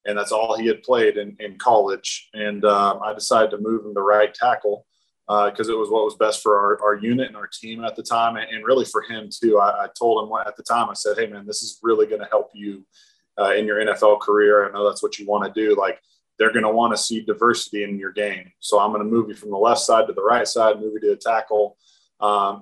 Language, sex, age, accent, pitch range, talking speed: English, male, 20-39, American, 105-125 Hz, 275 wpm